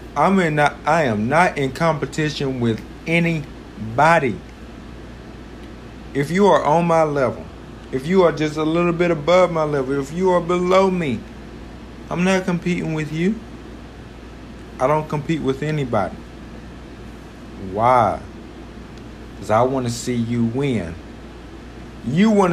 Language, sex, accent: English, male, American